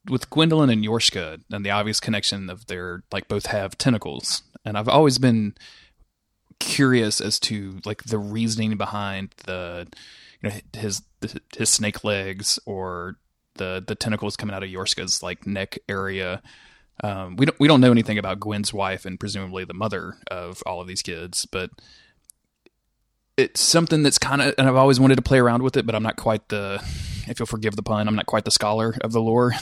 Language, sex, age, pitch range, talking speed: English, male, 20-39, 100-120 Hz, 190 wpm